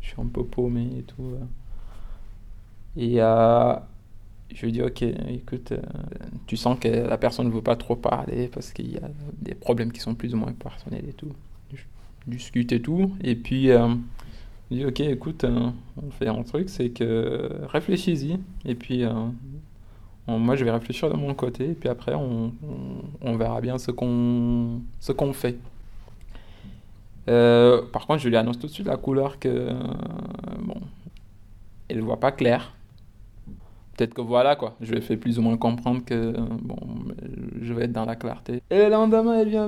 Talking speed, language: 190 wpm, French